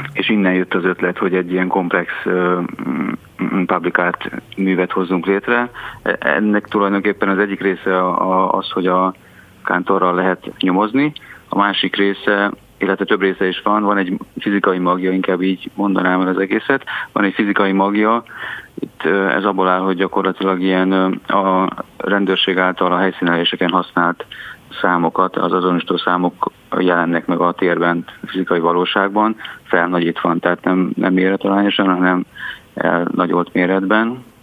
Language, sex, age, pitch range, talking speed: Hungarian, male, 30-49, 90-100 Hz, 145 wpm